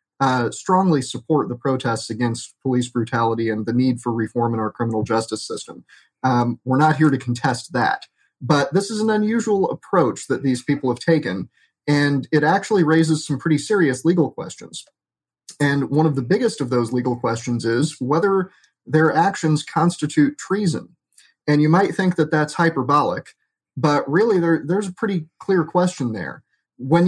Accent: American